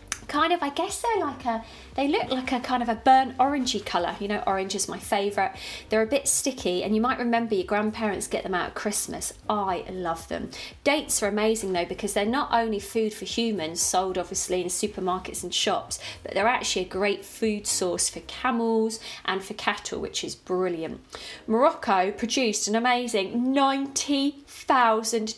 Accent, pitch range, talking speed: British, 200-260 Hz, 185 wpm